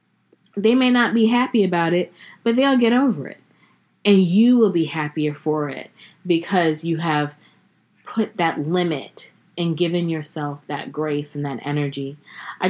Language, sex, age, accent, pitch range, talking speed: English, female, 20-39, American, 160-190 Hz, 160 wpm